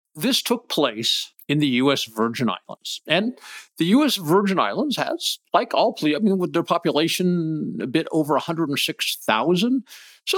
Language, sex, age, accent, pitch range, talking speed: English, male, 50-69, American, 145-210 Hz, 155 wpm